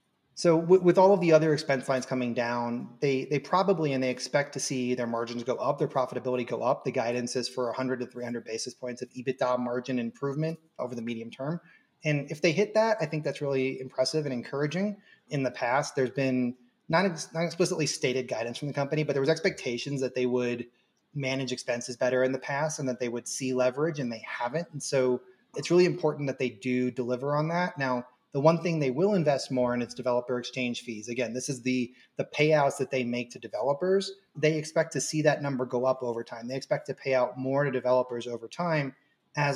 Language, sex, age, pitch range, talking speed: English, male, 30-49, 125-145 Hz, 225 wpm